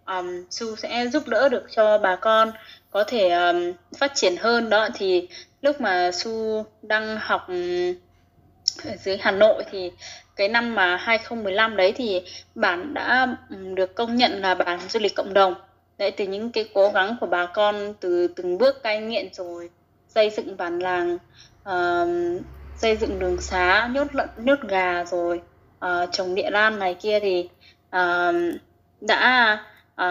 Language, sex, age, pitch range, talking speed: Vietnamese, female, 20-39, 185-235 Hz, 165 wpm